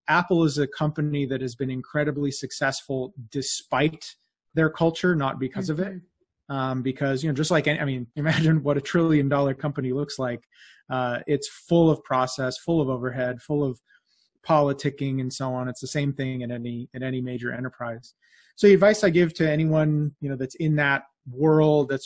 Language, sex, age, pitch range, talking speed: English, male, 30-49, 130-155 Hz, 190 wpm